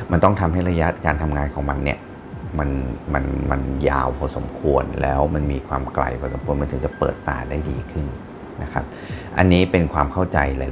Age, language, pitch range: 30-49, Thai, 70-85 Hz